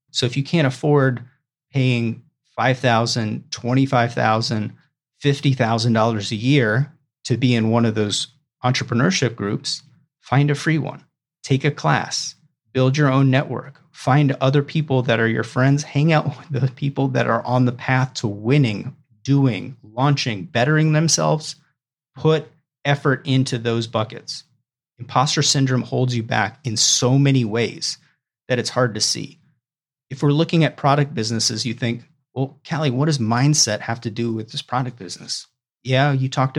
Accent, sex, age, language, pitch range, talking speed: American, male, 30-49, English, 120-145 Hz, 155 wpm